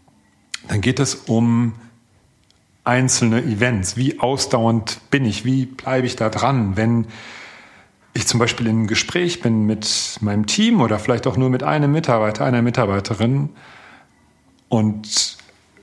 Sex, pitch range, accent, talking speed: male, 105-125 Hz, German, 135 wpm